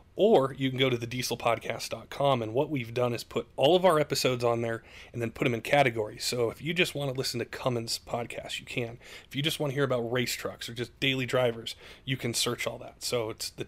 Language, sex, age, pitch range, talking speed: English, male, 30-49, 115-130 Hz, 255 wpm